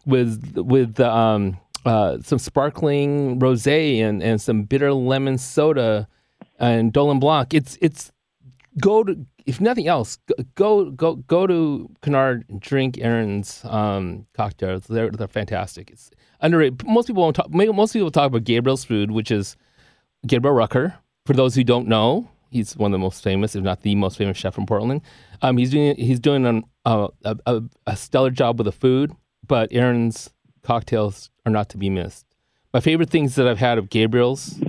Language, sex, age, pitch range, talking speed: English, male, 30-49, 115-145 Hz, 180 wpm